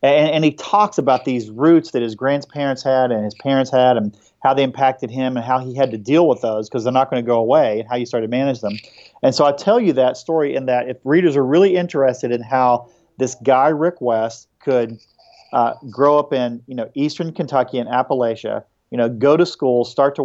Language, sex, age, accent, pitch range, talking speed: English, male, 40-59, American, 120-145 Hz, 235 wpm